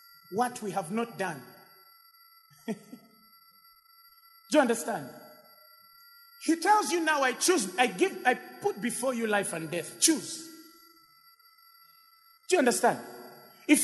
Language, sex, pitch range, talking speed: English, male, 215-315 Hz, 120 wpm